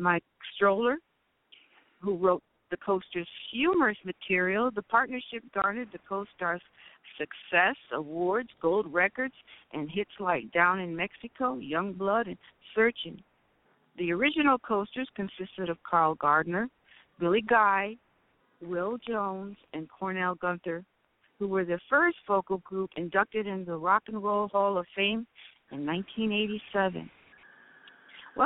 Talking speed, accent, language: 120 wpm, American, English